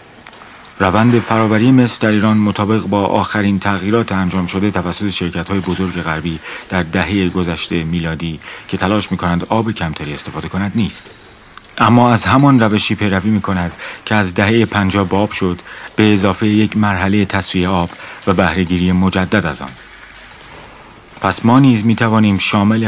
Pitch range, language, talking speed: 90-105 Hz, Persian, 145 wpm